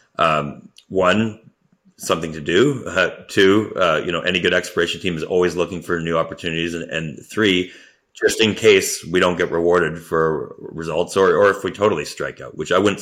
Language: English